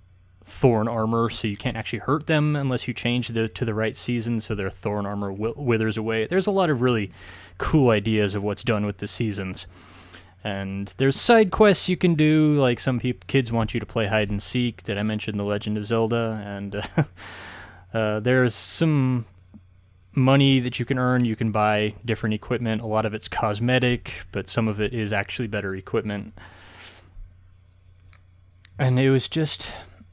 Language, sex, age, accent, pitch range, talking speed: English, male, 20-39, American, 100-125 Hz, 175 wpm